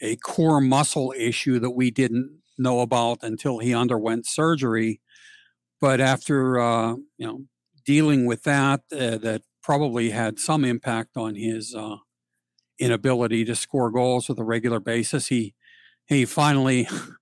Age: 50-69